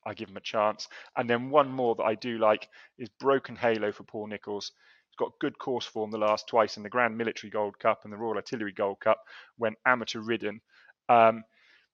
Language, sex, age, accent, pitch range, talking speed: English, male, 30-49, British, 105-125 Hz, 215 wpm